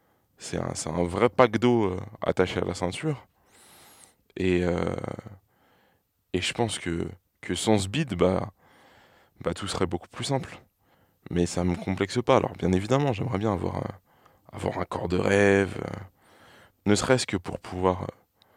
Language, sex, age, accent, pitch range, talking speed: French, male, 20-39, French, 90-110 Hz, 170 wpm